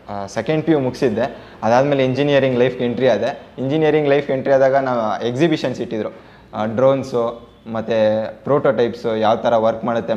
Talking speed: 130 wpm